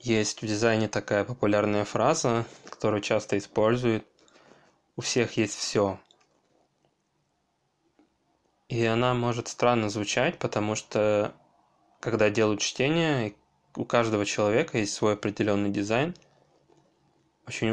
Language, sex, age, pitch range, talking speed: Russian, male, 20-39, 100-120 Hz, 105 wpm